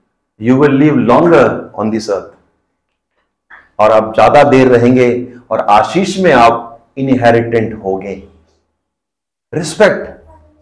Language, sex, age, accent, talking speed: Hindi, male, 50-69, native, 115 wpm